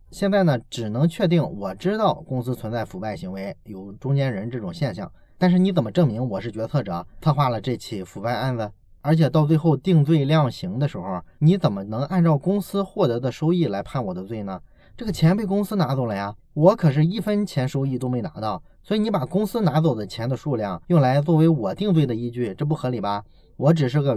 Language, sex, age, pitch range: Chinese, male, 20-39, 120-175 Hz